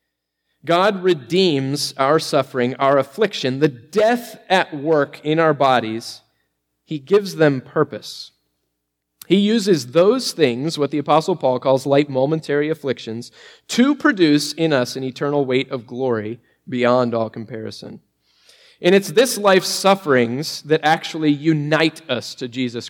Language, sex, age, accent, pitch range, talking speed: English, male, 30-49, American, 120-165 Hz, 135 wpm